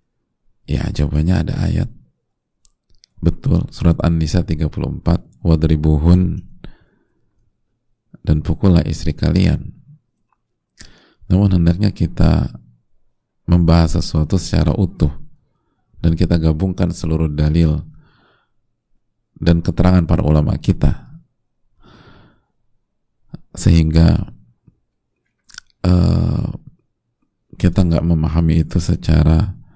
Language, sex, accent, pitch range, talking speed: Indonesian, male, native, 80-100 Hz, 75 wpm